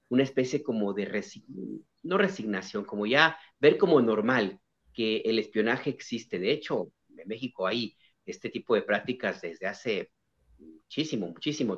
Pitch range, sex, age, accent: 105-125 Hz, male, 40-59, Mexican